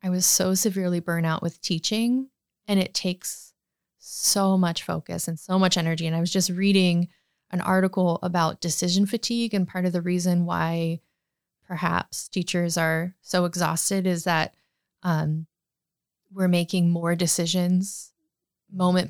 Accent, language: American, English